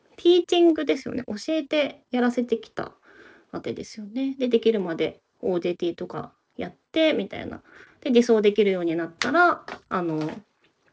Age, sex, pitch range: 20-39, female, 200-275 Hz